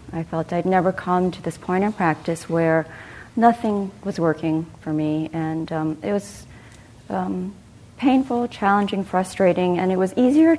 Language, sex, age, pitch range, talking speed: English, female, 40-59, 160-210 Hz, 160 wpm